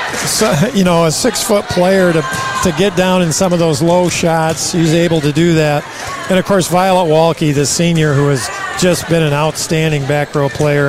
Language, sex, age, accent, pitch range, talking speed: English, male, 50-69, American, 150-185 Hz, 205 wpm